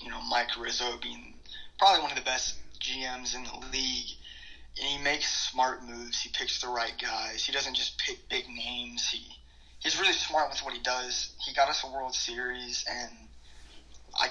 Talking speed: 195 wpm